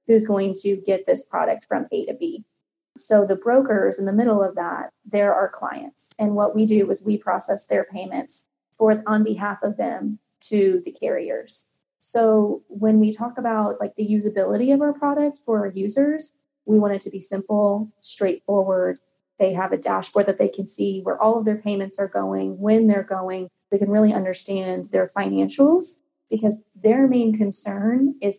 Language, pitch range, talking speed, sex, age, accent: English, 195-230 Hz, 185 wpm, female, 30-49, American